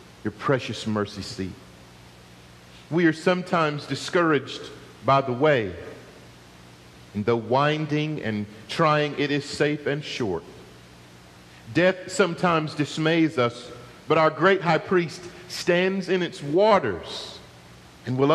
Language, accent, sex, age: English, American, male, 50-69